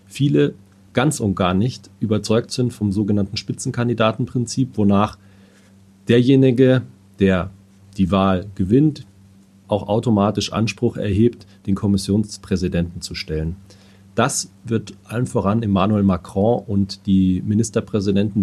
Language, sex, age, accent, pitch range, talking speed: German, male, 40-59, German, 95-115 Hz, 105 wpm